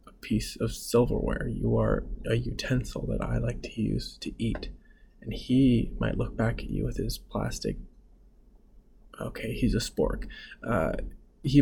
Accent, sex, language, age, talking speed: American, male, English, 20-39, 155 wpm